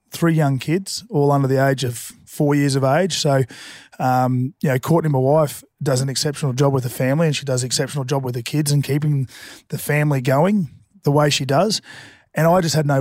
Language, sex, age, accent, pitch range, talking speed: English, male, 30-49, Australian, 135-155 Hz, 225 wpm